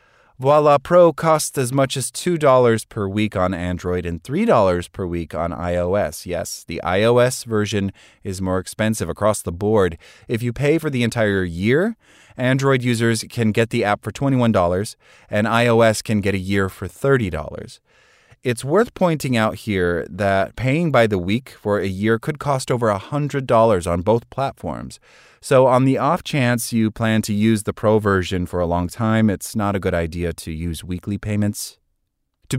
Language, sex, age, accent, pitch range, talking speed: English, male, 30-49, American, 95-125 Hz, 175 wpm